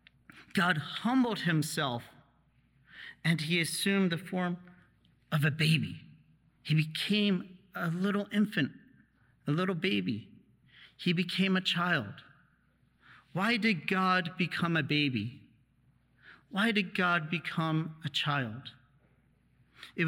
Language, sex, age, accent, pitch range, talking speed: English, male, 40-59, American, 145-180 Hz, 110 wpm